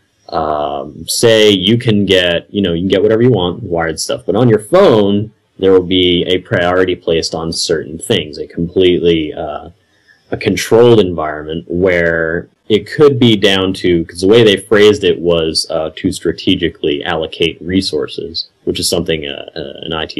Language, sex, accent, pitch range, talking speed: English, male, American, 85-115 Hz, 175 wpm